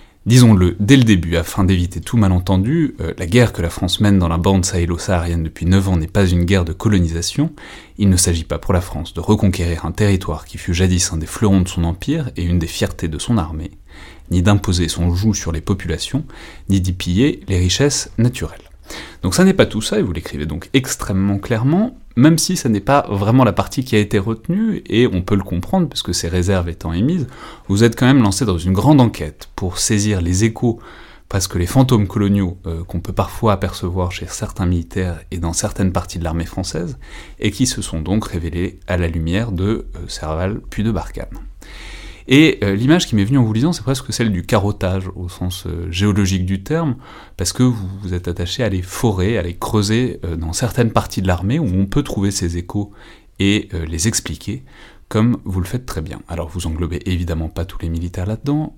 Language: French